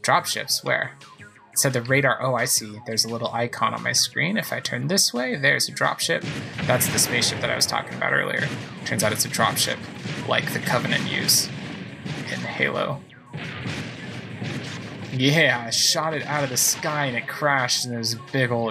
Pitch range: 125-155 Hz